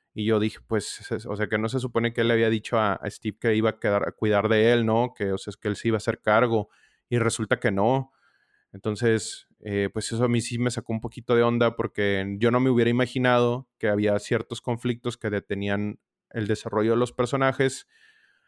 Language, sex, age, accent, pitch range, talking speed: Spanish, male, 30-49, Mexican, 105-120 Hz, 230 wpm